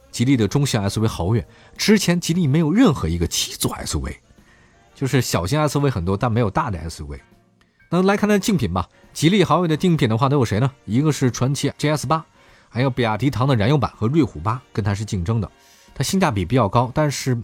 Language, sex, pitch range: Chinese, male, 100-145 Hz